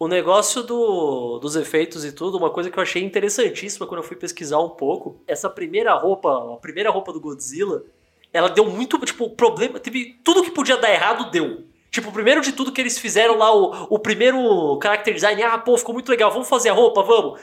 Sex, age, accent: male, 20-39, Brazilian